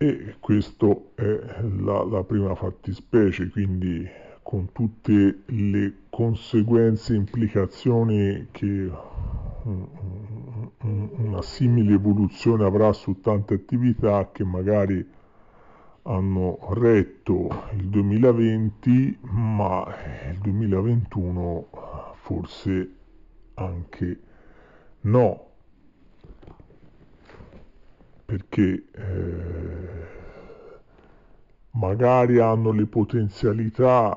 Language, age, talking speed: Italian, 50-69, 70 wpm